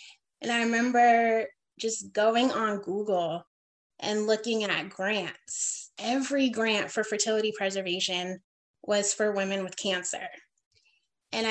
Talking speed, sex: 115 wpm, female